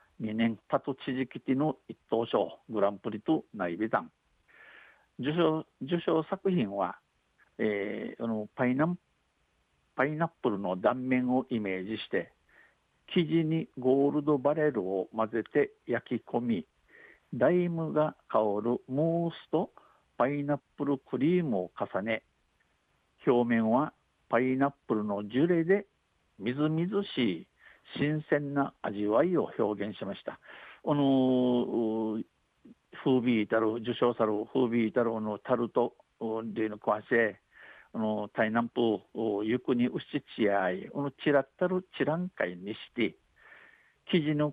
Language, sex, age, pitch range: Japanese, male, 60-79, 110-150 Hz